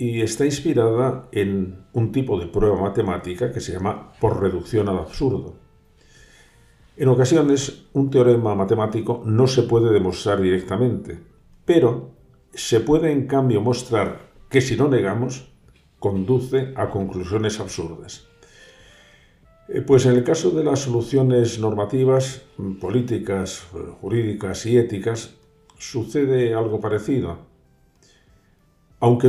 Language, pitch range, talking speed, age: Spanish, 95-125 Hz, 115 wpm, 50-69